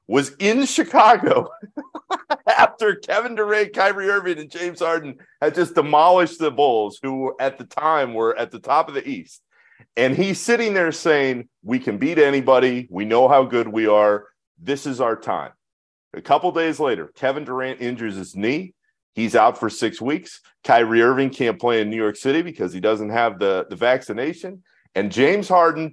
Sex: male